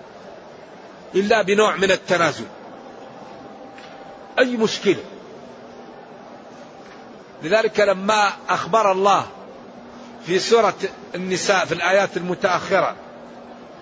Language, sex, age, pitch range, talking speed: Arabic, male, 50-69, 195-225 Hz, 70 wpm